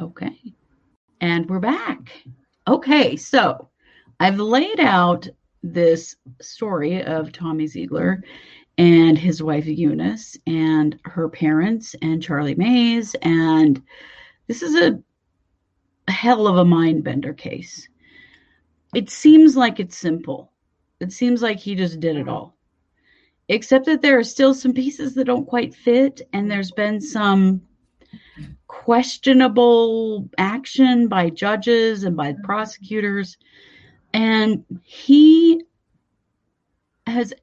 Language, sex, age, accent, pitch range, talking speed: English, female, 40-59, American, 160-235 Hz, 115 wpm